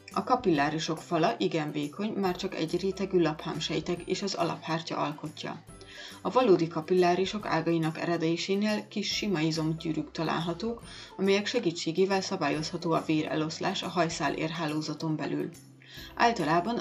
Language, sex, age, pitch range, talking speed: Hungarian, female, 30-49, 160-185 Hz, 115 wpm